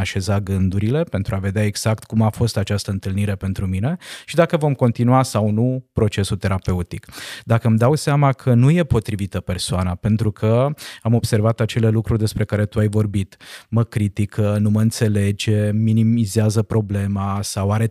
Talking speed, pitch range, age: 170 wpm, 100-115 Hz, 20-39